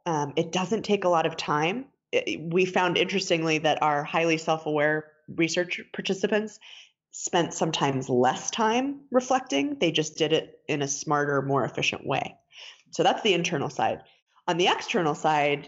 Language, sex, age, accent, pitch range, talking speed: English, female, 20-39, American, 145-175 Hz, 155 wpm